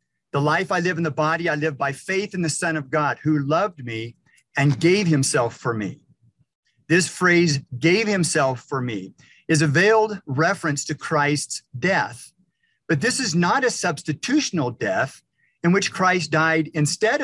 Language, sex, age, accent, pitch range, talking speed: English, male, 50-69, American, 145-180 Hz, 170 wpm